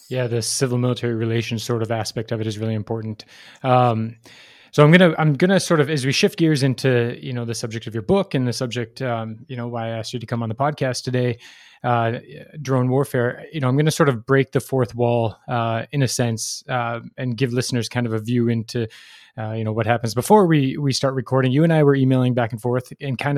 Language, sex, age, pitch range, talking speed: English, male, 20-39, 120-140 Hz, 245 wpm